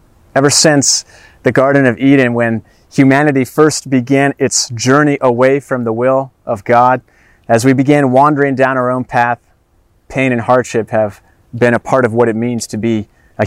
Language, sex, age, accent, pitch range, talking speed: English, male, 30-49, American, 110-140 Hz, 180 wpm